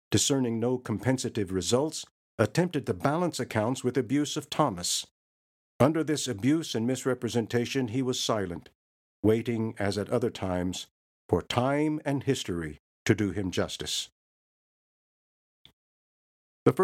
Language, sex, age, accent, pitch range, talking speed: English, male, 60-79, American, 95-120 Hz, 120 wpm